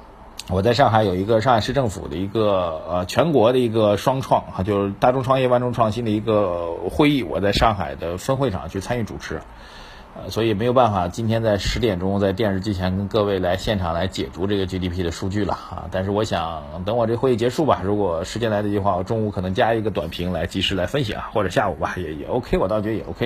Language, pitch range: Chinese, 95-115 Hz